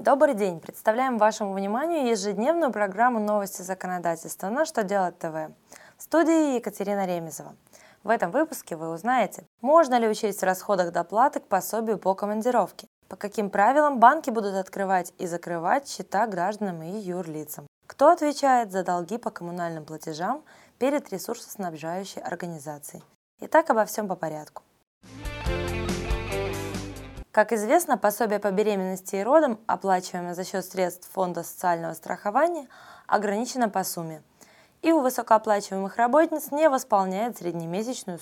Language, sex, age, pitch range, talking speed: Russian, female, 20-39, 175-230 Hz, 130 wpm